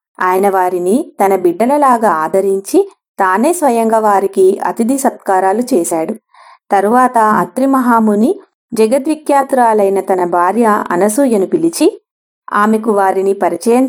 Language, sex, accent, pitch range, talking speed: English, female, Indian, 195-265 Hz, 95 wpm